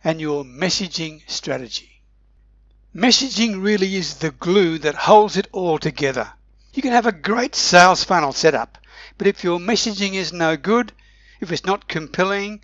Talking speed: 160 wpm